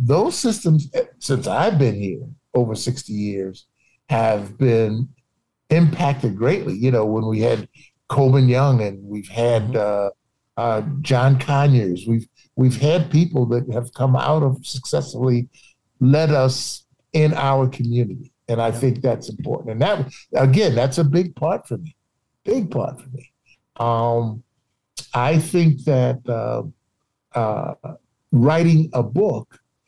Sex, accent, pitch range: male, American, 115-140 Hz